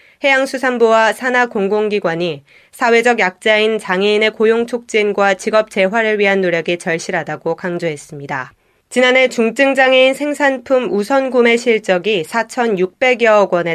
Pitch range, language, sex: 185-240 Hz, Korean, female